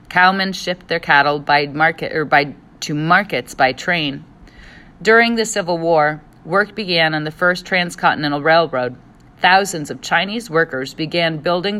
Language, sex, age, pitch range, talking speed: English, female, 40-59, 145-180 Hz, 150 wpm